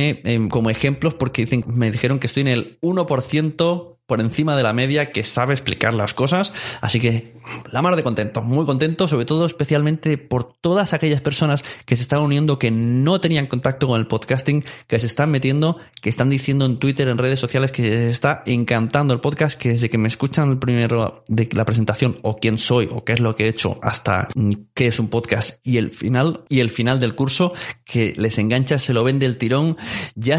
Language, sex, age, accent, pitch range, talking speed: Spanish, male, 20-39, Spanish, 115-145 Hz, 210 wpm